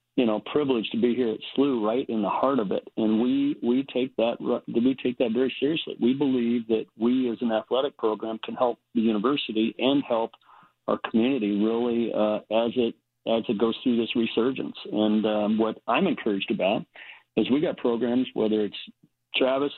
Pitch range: 110-130 Hz